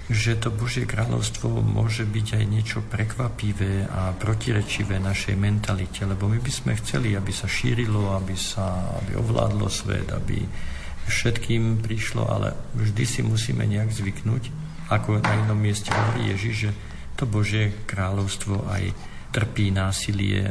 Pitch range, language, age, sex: 95-110 Hz, Slovak, 50-69, male